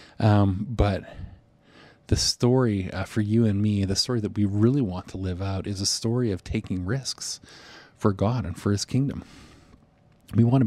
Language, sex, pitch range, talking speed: English, male, 95-120 Hz, 185 wpm